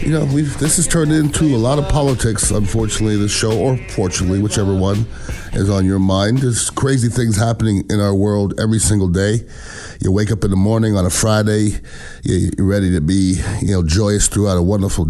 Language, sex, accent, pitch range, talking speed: English, male, American, 85-105 Hz, 205 wpm